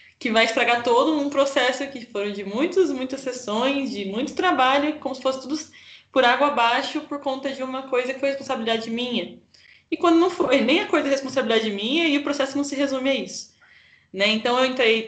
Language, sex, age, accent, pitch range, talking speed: Portuguese, female, 20-39, Brazilian, 190-265 Hz, 215 wpm